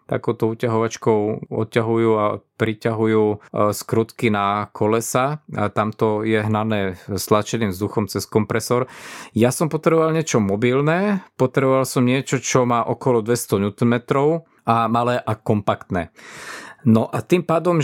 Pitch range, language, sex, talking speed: 110-135 Hz, Slovak, male, 120 wpm